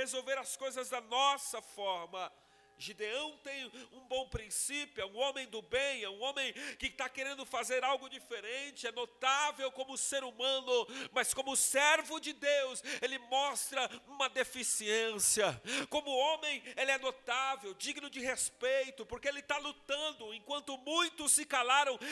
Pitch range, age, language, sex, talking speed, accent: 255-285 Hz, 50-69, Portuguese, male, 150 wpm, Brazilian